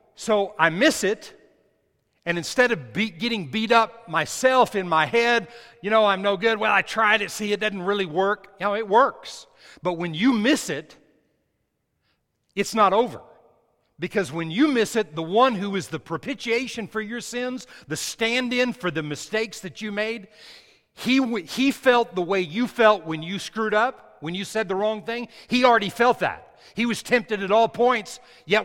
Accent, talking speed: American, 195 wpm